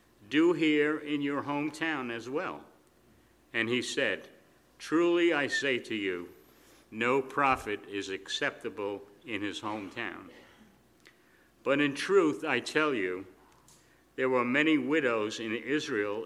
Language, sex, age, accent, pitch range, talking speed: English, male, 60-79, American, 115-150 Hz, 125 wpm